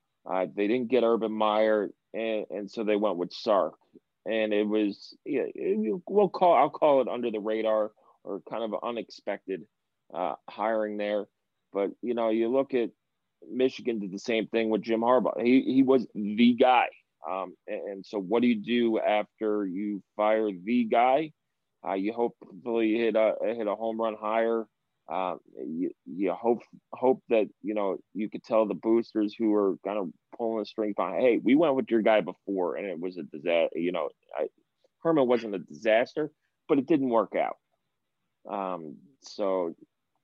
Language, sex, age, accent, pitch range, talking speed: English, male, 30-49, American, 105-125 Hz, 180 wpm